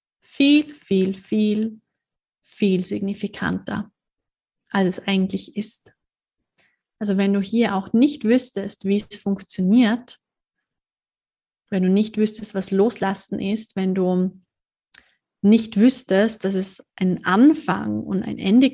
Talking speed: 120 wpm